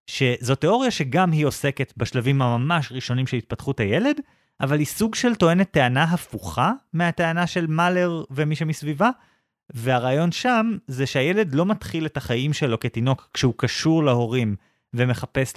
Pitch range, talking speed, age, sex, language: 120-170 Hz, 145 wpm, 30-49, male, Hebrew